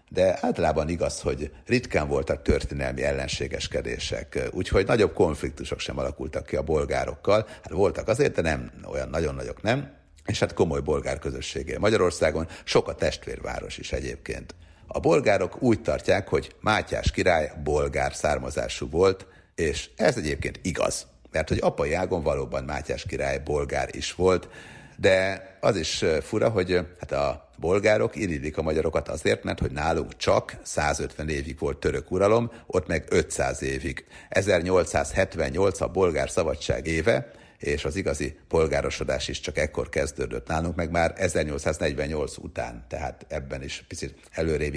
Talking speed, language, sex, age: 140 wpm, Hungarian, male, 60-79